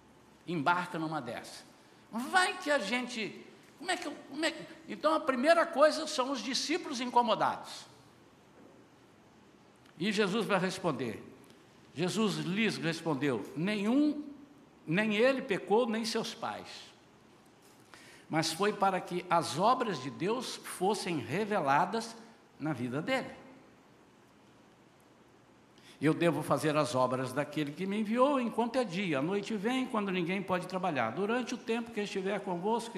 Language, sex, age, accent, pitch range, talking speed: Portuguese, male, 60-79, Brazilian, 165-250 Hz, 135 wpm